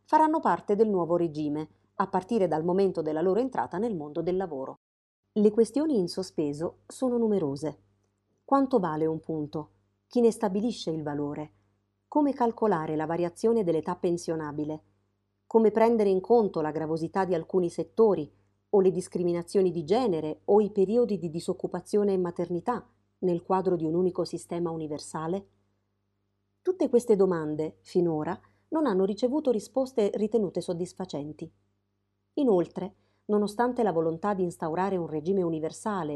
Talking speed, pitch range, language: 140 wpm, 155-210 Hz, Italian